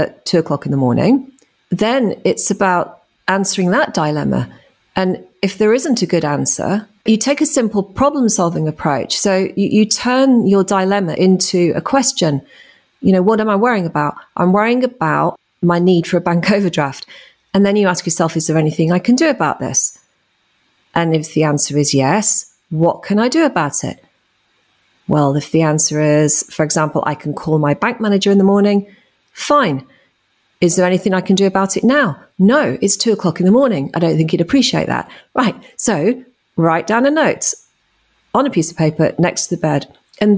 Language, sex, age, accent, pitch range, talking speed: English, female, 40-59, British, 160-210 Hz, 195 wpm